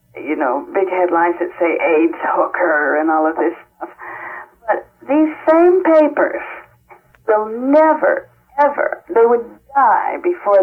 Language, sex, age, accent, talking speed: English, female, 50-69, American, 135 wpm